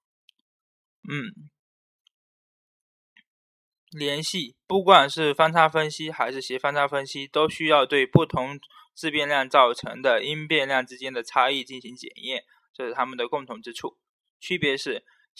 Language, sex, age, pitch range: Chinese, male, 20-39, 135-160 Hz